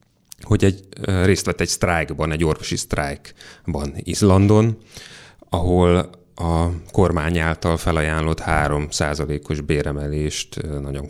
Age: 30-49